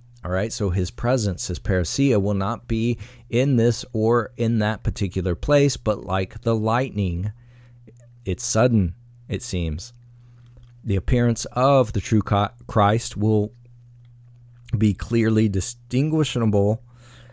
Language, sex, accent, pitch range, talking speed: English, male, American, 105-120 Hz, 120 wpm